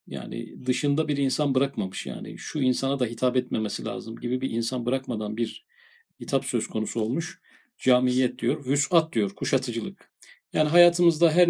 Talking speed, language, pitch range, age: 150 wpm, Turkish, 130-175 Hz, 50-69